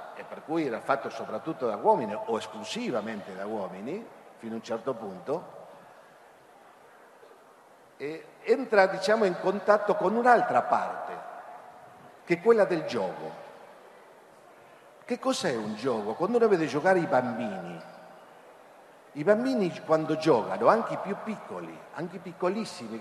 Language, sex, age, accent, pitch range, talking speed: Italian, male, 50-69, native, 145-220 Hz, 135 wpm